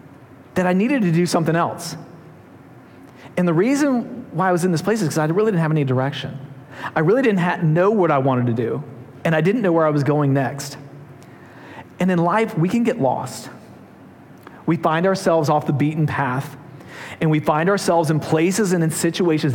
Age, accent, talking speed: 40-59, American, 205 wpm